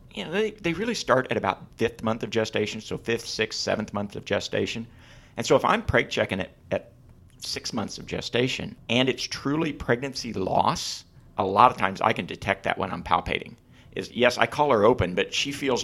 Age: 50-69